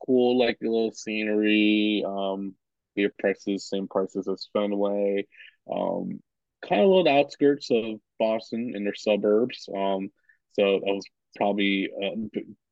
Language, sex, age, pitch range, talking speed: English, male, 20-39, 100-115 Hz, 145 wpm